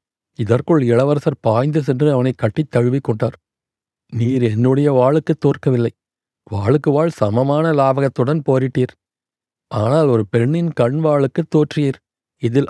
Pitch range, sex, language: 120-150 Hz, male, Tamil